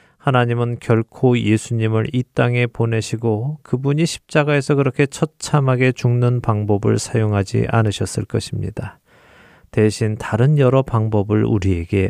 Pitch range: 105-130 Hz